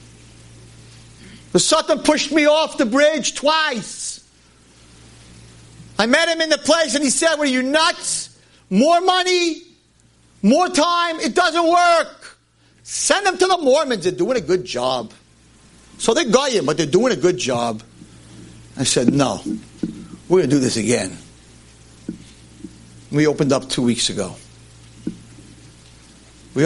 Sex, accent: male, American